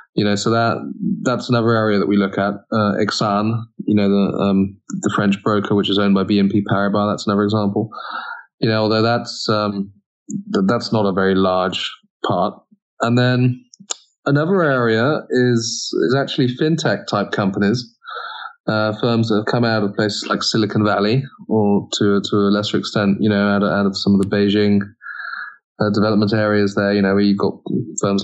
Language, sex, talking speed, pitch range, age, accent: English, male, 190 wpm, 100-115 Hz, 20-39, British